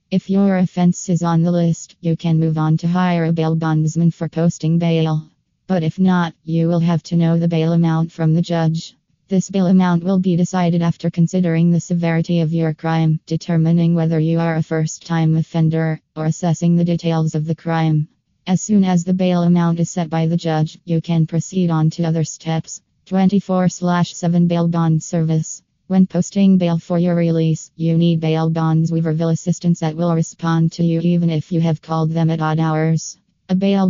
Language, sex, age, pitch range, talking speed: English, female, 20-39, 160-175 Hz, 195 wpm